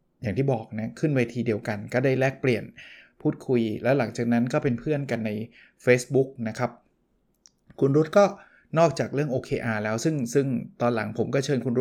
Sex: male